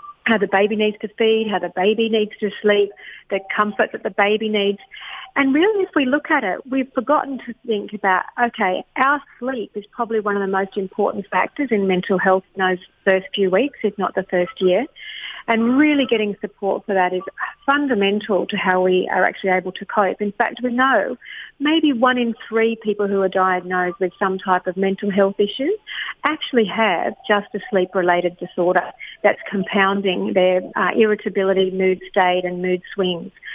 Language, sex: English, female